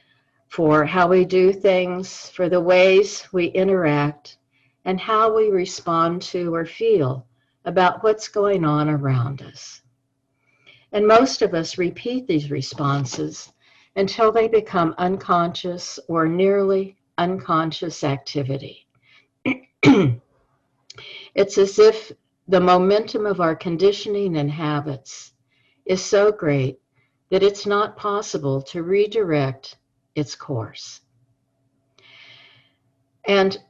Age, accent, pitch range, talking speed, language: 60-79, American, 135-190 Hz, 105 wpm, English